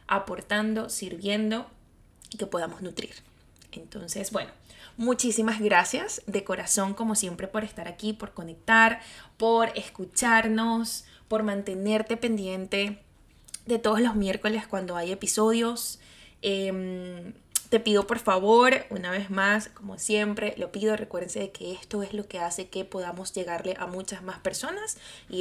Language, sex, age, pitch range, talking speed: Spanish, female, 20-39, 185-220 Hz, 135 wpm